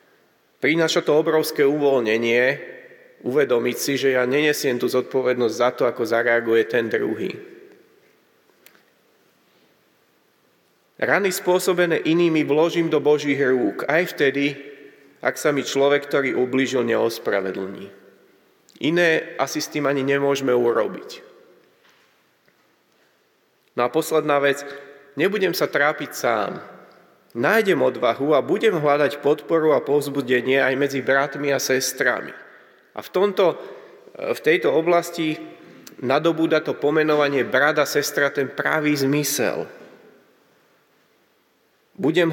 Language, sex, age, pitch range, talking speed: Slovak, male, 30-49, 135-165 Hz, 110 wpm